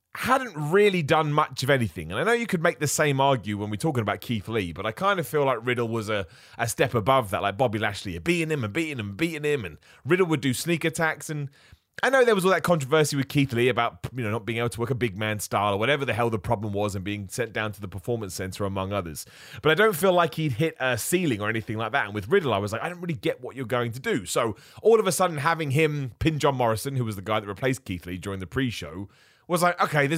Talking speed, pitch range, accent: 285 wpm, 110-165 Hz, British